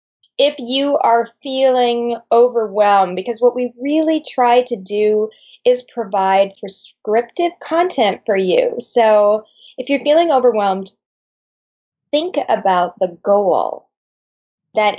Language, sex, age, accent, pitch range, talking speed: English, female, 20-39, American, 210-275 Hz, 110 wpm